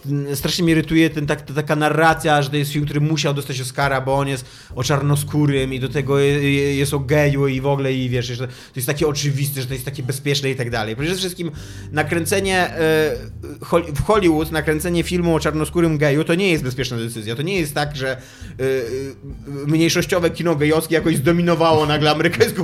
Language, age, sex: Polish, 30-49, male